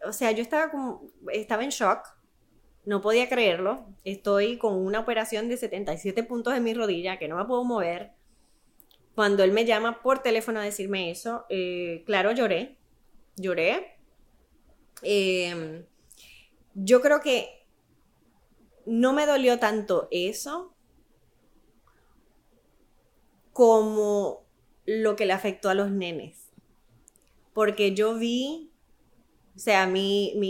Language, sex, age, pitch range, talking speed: Spanish, female, 20-39, 195-235 Hz, 125 wpm